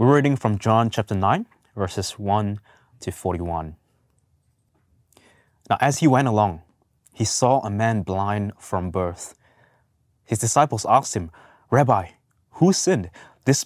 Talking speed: 130 wpm